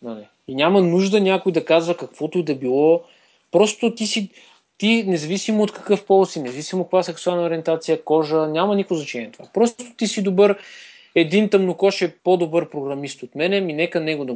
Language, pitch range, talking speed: Bulgarian, 150-200 Hz, 190 wpm